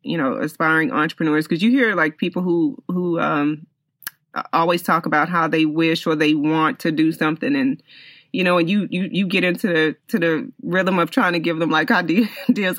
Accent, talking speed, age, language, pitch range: American, 205 wpm, 30-49, English, 155-180 Hz